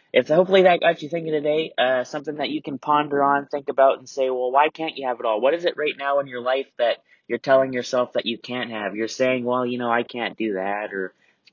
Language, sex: English, male